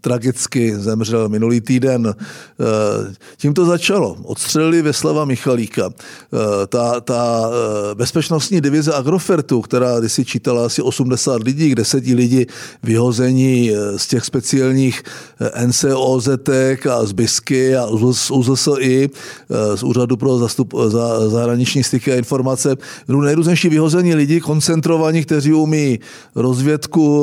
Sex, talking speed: male, 125 wpm